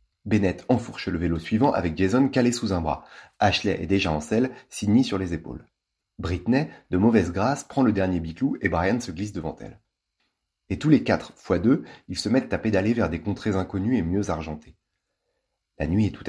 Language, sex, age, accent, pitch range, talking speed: French, male, 30-49, French, 85-115 Hz, 205 wpm